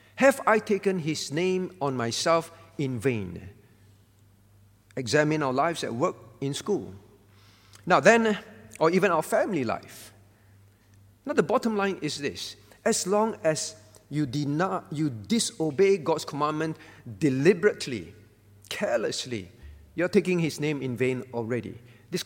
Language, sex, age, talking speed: English, male, 50-69, 130 wpm